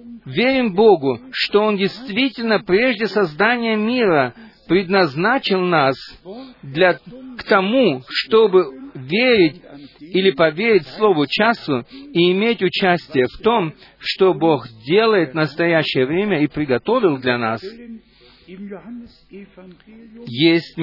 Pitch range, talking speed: 145-210 Hz, 100 wpm